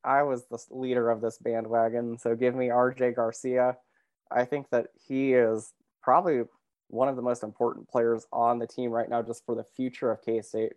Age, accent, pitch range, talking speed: 20-39, American, 110-125 Hz, 195 wpm